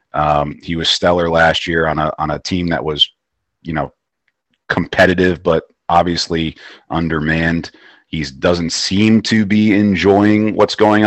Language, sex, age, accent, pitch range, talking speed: English, male, 30-49, American, 80-100 Hz, 145 wpm